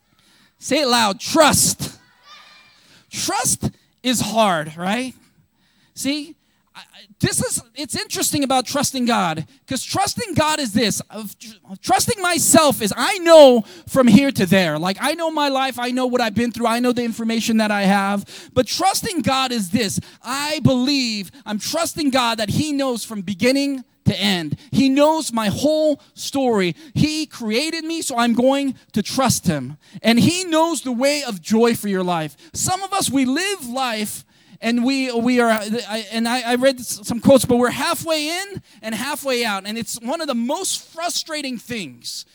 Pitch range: 210-275 Hz